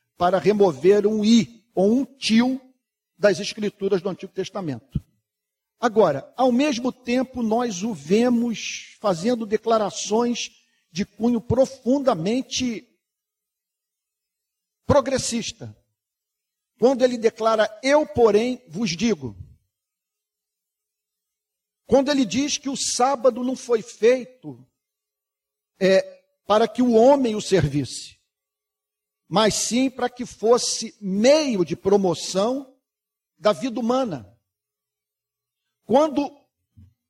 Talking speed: 95 wpm